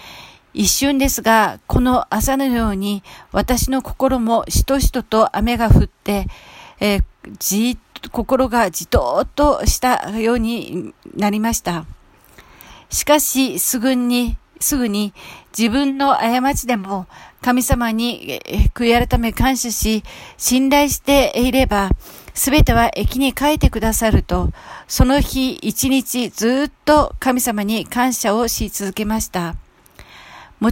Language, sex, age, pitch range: Japanese, female, 40-59, 215-265 Hz